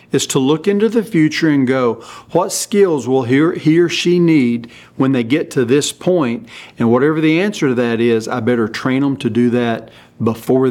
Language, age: English, 50-69